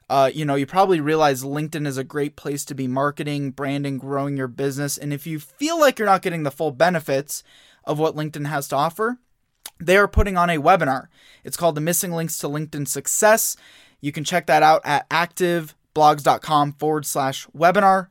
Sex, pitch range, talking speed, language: male, 140-175 Hz, 195 wpm, English